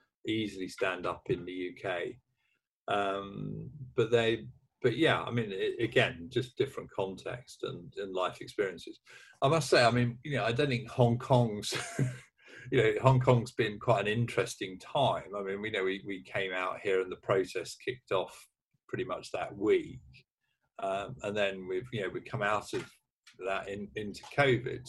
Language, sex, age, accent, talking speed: English, male, 50-69, British, 180 wpm